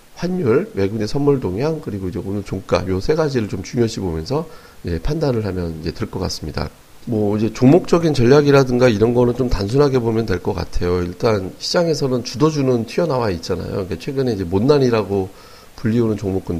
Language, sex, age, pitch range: Korean, male, 40-59, 95-130 Hz